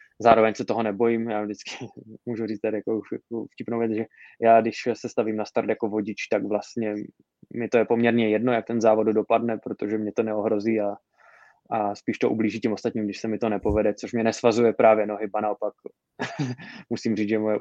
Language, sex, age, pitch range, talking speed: Czech, male, 20-39, 100-115 Hz, 195 wpm